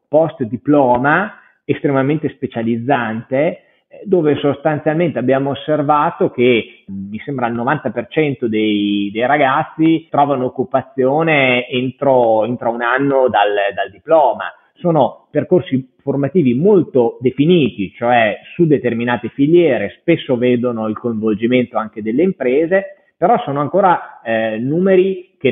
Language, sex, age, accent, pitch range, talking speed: Italian, male, 30-49, native, 115-150 Hz, 110 wpm